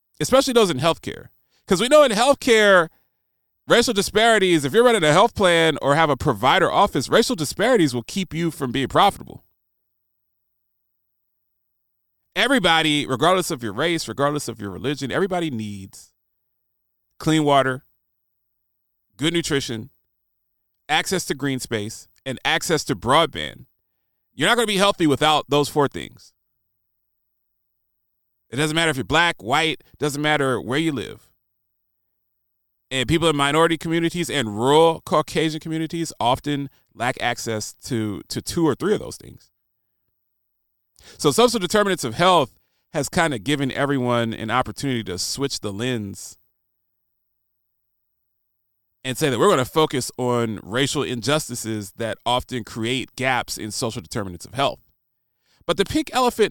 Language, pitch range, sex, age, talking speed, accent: English, 115-165 Hz, male, 30-49, 140 wpm, American